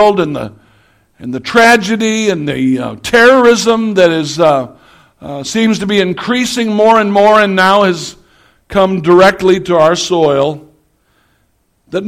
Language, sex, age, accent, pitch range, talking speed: English, male, 60-79, American, 165-215 Hz, 135 wpm